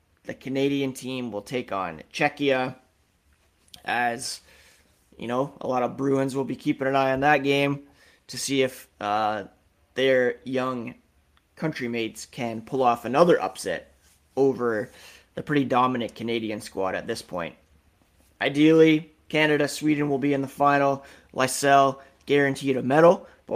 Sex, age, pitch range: male, 30-49, 110-145 Hz